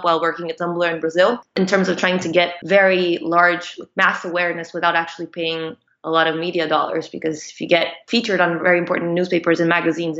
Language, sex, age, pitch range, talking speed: English, female, 20-39, 165-190 Hz, 205 wpm